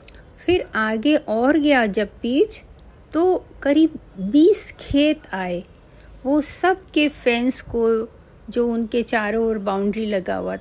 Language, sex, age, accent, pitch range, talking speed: Hindi, female, 50-69, native, 220-290 Hz, 130 wpm